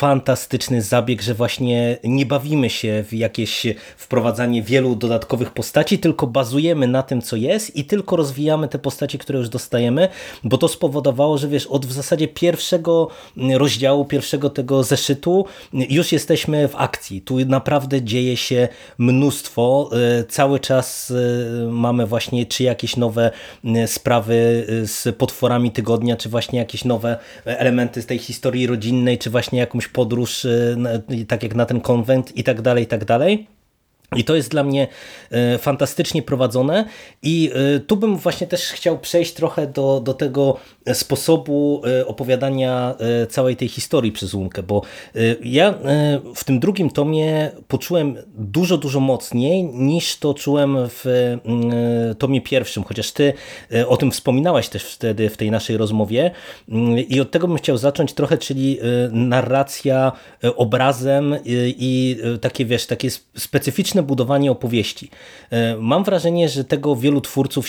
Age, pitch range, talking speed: 20-39, 120-145 Hz, 140 wpm